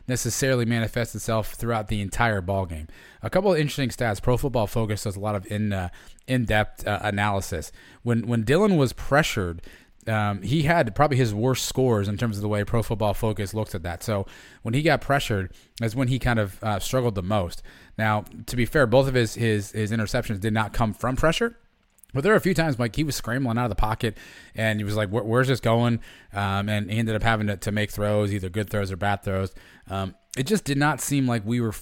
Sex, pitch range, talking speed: male, 105-130 Hz, 230 wpm